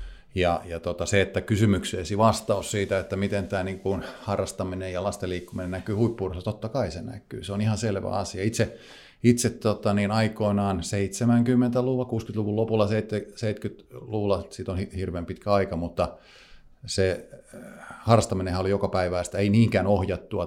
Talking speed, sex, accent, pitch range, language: 130 wpm, male, native, 90-110 Hz, Finnish